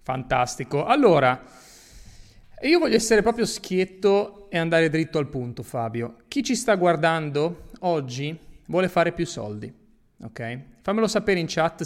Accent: native